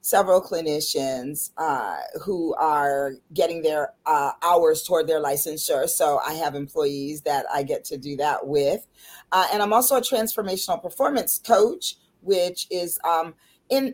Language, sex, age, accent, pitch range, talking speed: English, female, 40-59, American, 145-220 Hz, 150 wpm